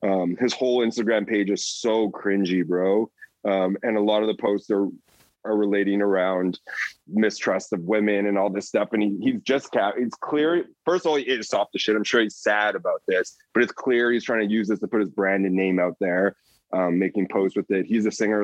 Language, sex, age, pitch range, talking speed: English, male, 20-39, 95-115 Hz, 230 wpm